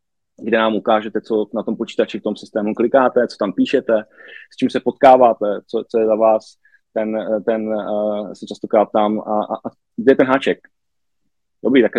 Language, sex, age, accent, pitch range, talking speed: Czech, male, 20-39, native, 110-130 Hz, 190 wpm